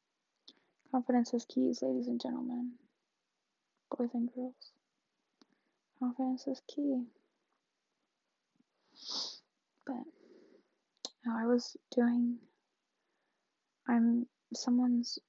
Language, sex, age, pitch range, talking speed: English, female, 10-29, 235-255 Hz, 75 wpm